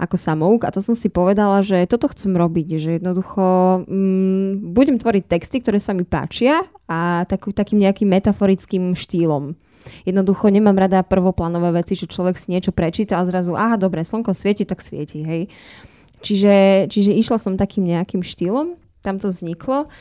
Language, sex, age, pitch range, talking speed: Slovak, female, 10-29, 170-195 Hz, 170 wpm